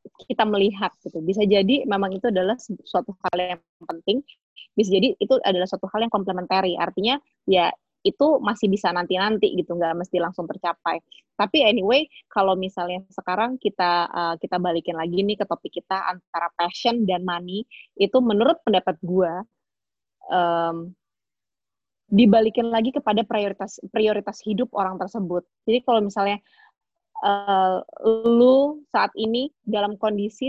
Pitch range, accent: 185-230 Hz, native